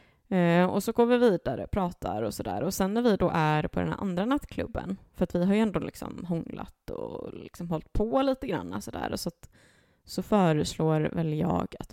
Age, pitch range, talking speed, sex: 20-39, 160-195 Hz, 210 wpm, female